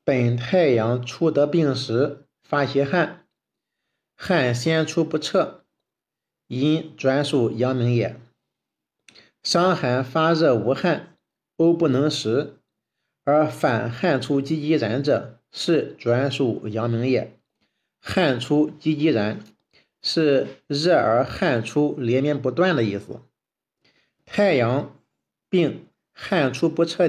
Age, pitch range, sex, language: 50-69, 120-160 Hz, male, Chinese